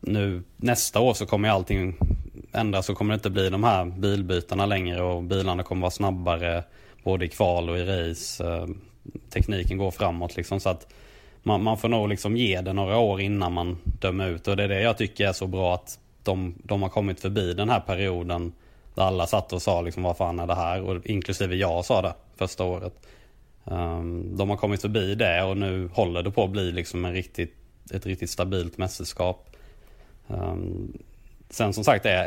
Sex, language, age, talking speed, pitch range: male, Swedish, 20-39, 195 wpm, 90-100 Hz